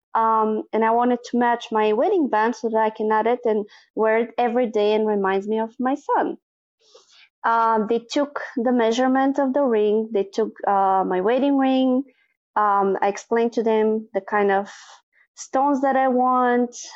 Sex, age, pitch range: female, 20-39, 205-265 Hz